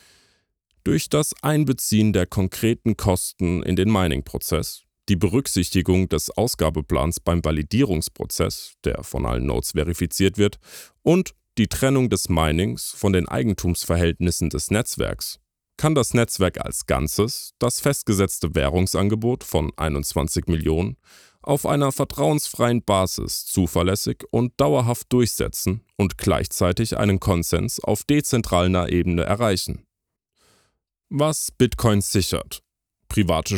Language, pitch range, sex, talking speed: German, 85-115 Hz, male, 110 wpm